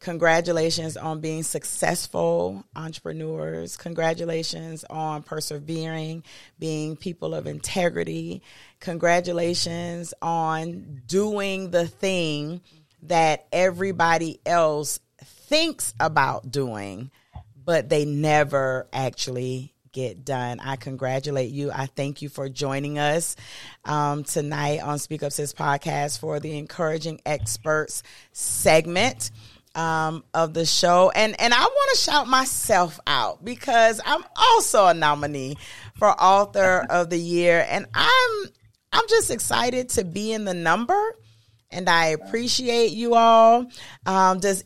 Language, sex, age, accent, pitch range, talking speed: English, female, 40-59, American, 145-210 Hz, 120 wpm